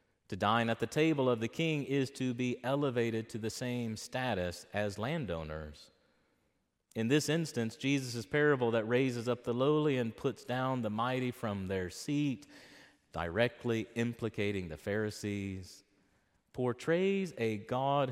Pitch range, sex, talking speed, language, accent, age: 100-125 Hz, male, 140 wpm, English, American, 30-49